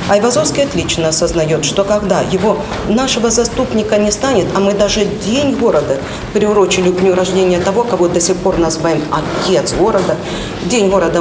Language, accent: Russian, native